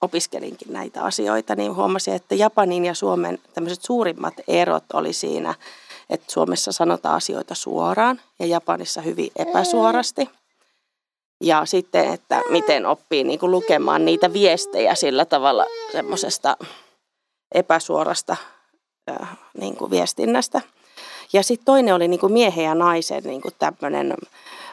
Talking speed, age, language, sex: 120 wpm, 30-49, Finnish, female